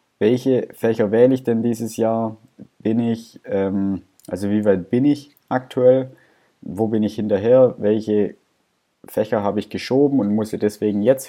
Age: 20-39